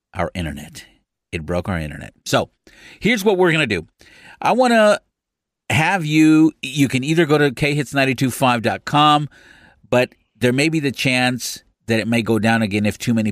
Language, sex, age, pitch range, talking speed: English, male, 50-69, 100-130 Hz, 175 wpm